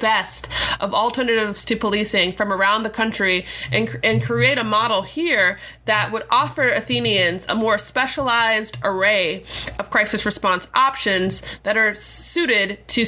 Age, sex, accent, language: 20-39, female, American, English